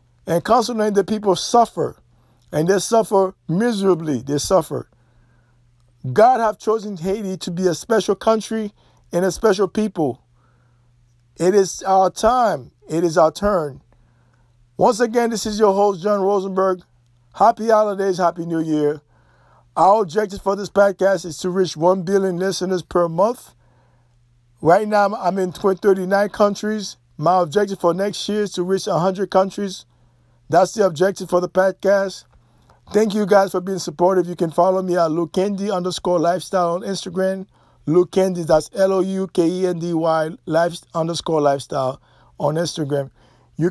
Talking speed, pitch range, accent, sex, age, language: 145 wpm, 150-195 Hz, American, male, 50-69, English